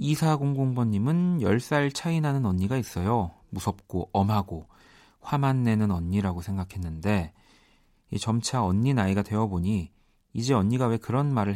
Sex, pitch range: male, 90-120 Hz